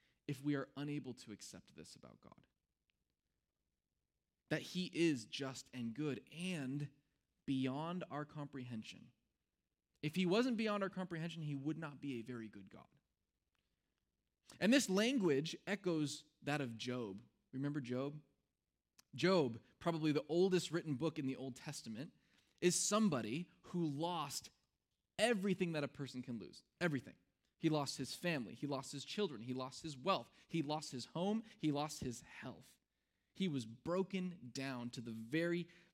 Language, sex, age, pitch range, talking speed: English, male, 20-39, 135-185 Hz, 150 wpm